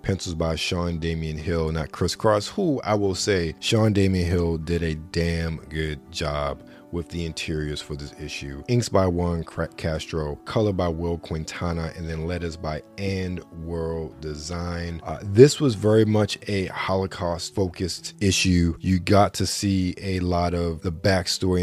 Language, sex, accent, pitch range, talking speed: English, male, American, 80-95 Hz, 165 wpm